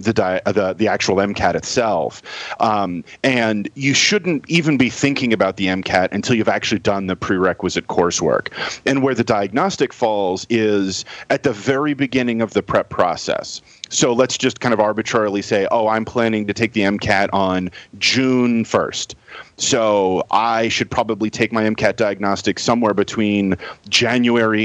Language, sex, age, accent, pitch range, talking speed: English, male, 40-59, American, 100-130 Hz, 160 wpm